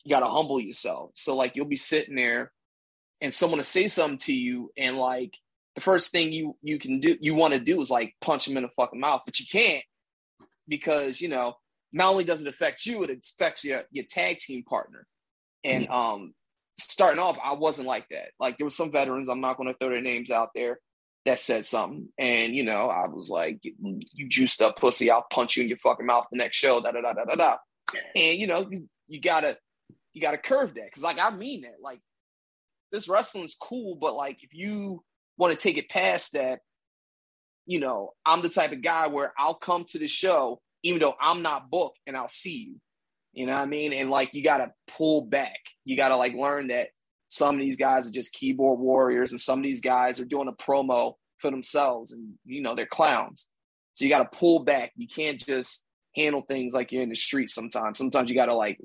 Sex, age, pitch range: male, 20-39, 130-170 Hz